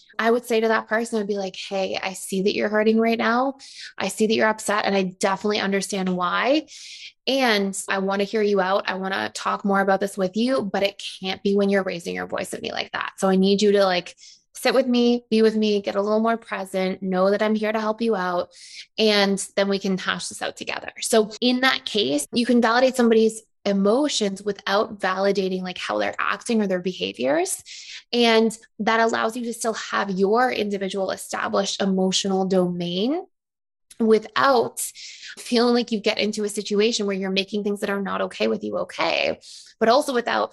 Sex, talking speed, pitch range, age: female, 210 wpm, 185-225 Hz, 20-39